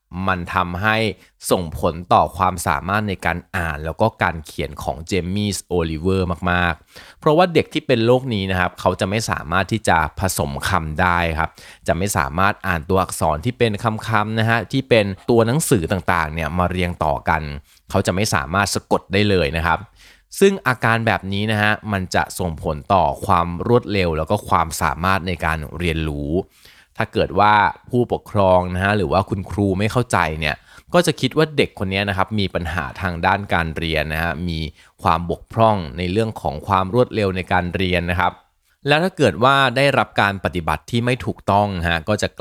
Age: 20-39